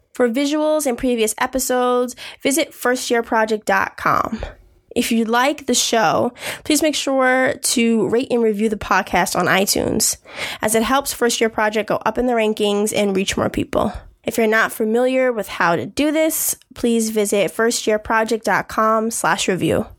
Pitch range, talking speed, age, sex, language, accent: 215-255 Hz, 155 wpm, 10-29, female, English, American